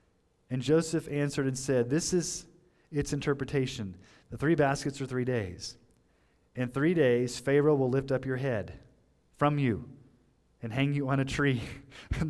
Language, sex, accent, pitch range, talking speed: English, male, American, 125-165 Hz, 160 wpm